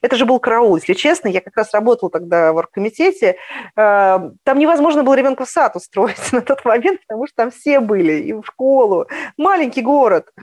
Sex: female